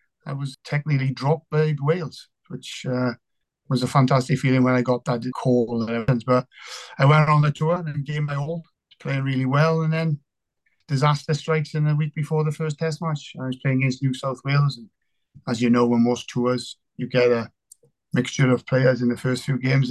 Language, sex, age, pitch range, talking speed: English, male, 30-49, 125-140 Hz, 205 wpm